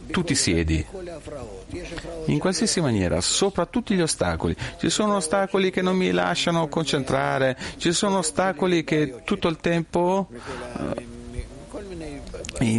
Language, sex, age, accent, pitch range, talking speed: Italian, male, 40-59, native, 105-155 Hz, 125 wpm